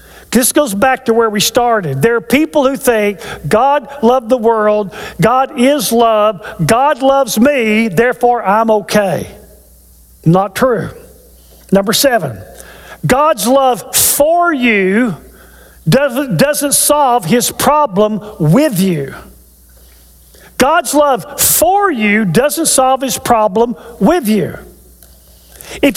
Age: 50-69